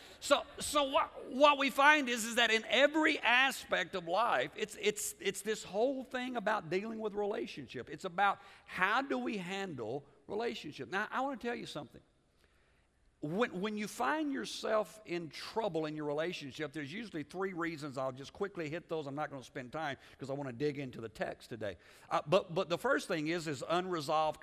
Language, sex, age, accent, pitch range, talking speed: English, male, 50-69, American, 135-195 Hz, 200 wpm